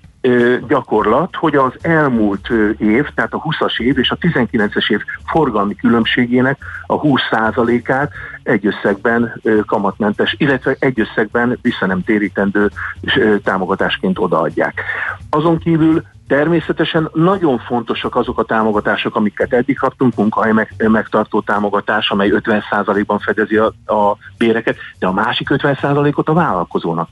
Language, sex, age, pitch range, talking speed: Hungarian, male, 50-69, 110-140 Hz, 115 wpm